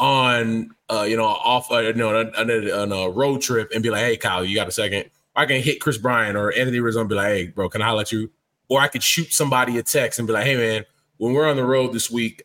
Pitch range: 115-145 Hz